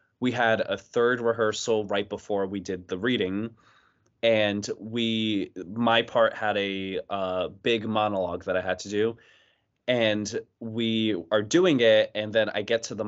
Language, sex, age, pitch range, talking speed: English, male, 20-39, 100-115 Hz, 165 wpm